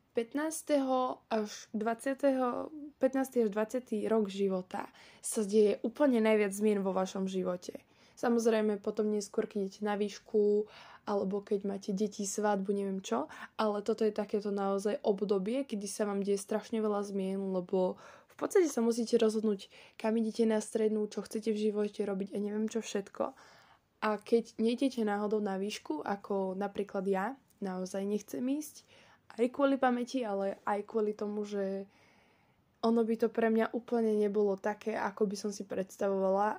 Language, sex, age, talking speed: Slovak, female, 10-29, 155 wpm